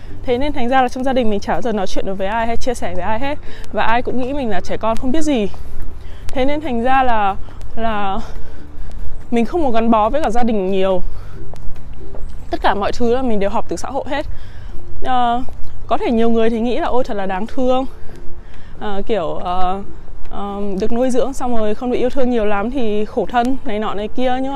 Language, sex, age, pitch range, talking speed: Vietnamese, female, 20-39, 190-250 Hz, 240 wpm